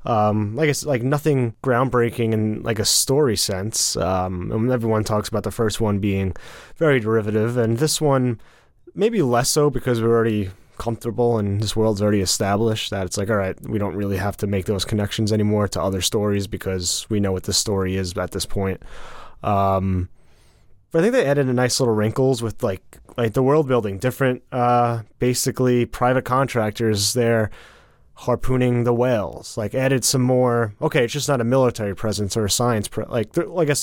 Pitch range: 100-125 Hz